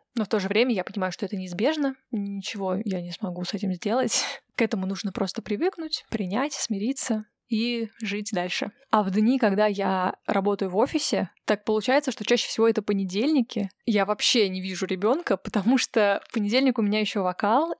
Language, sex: Russian, female